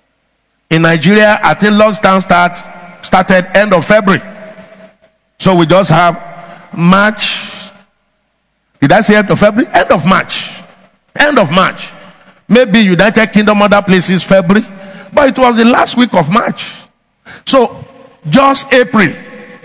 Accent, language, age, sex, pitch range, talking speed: Nigerian, English, 50-69, male, 190-245 Hz, 135 wpm